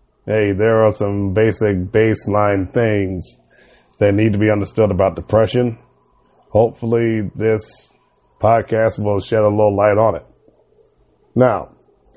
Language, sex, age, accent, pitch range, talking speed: English, male, 40-59, American, 100-115 Hz, 125 wpm